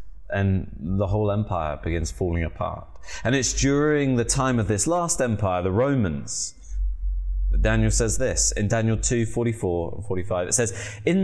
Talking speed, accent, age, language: 155 wpm, British, 20-39, English